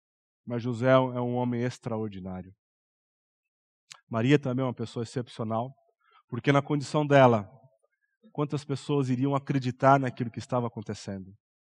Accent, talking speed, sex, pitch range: Brazilian, 120 wpm, male, 130-200 Hz